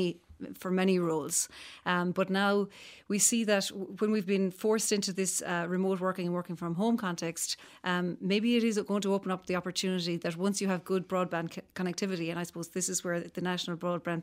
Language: English